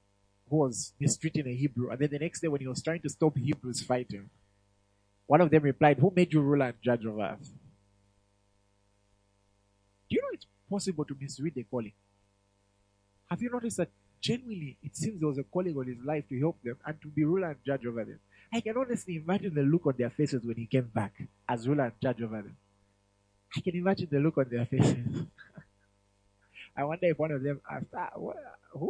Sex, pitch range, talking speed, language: male, 100-150 Hz, 205 wpm, English